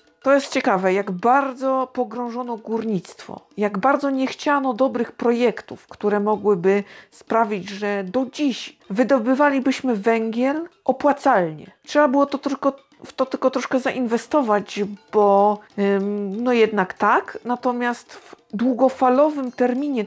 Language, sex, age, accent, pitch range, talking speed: Polish, female, 50-69, native, 195-260 Hz, 110 wpm